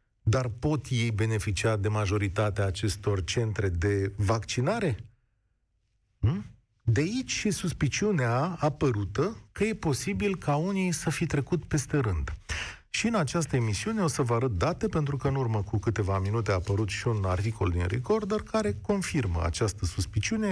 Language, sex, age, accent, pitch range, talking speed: Romanian, male, 40-59, native, 105-165 Hz, 150 wpm